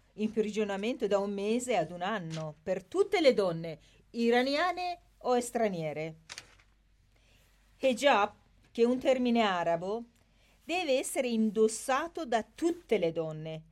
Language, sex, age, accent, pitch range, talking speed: Italian, female, 40-59, native, 160-235 Hz, 125 wpm